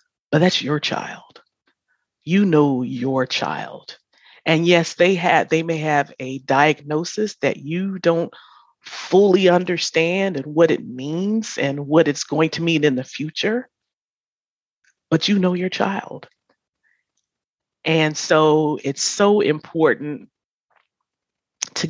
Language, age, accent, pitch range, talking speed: English, 40-59, American, 145-175 Hz, 125 wpm